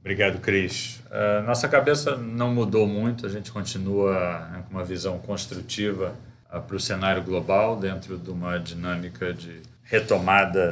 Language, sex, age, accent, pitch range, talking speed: Portuguese, male, 40-59, Brazilian, 90-105 Hz, 135 wpm